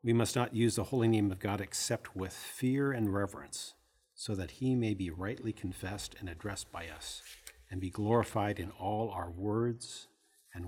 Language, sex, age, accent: English, male, 50-69, American